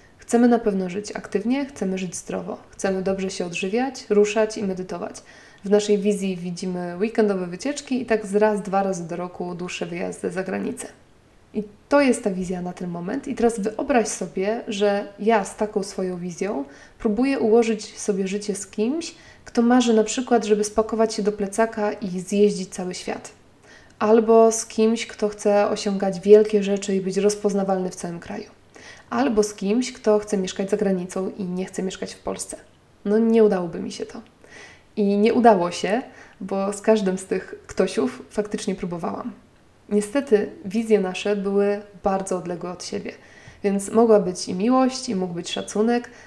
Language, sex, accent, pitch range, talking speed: Polish, female, native, 195-220 Hz, 170 wpm